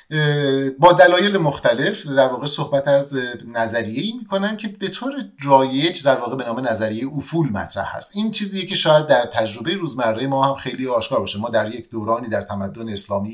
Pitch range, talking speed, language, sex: 115-165 Hz, 180 wpm, Persian, male